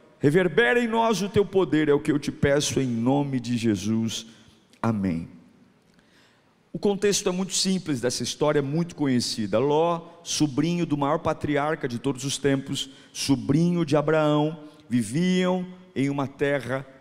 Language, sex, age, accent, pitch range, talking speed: Portuguese, male, 50-69, Brazilian, 140-180 Hz, 150 wpm